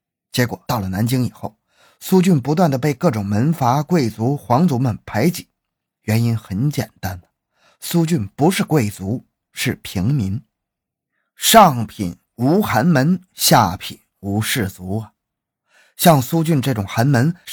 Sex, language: male, Chinese